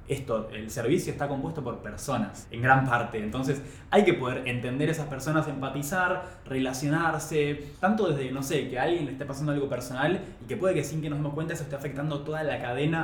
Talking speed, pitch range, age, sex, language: 215 wpm, 115-150 Hz, 20-39, male, Spanish